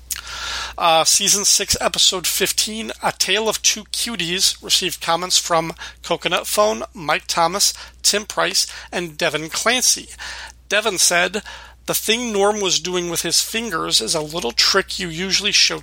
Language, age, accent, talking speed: English, 40-59, American, 150 wpm